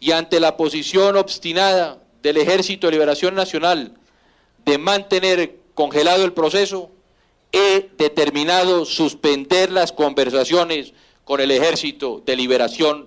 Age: 40-59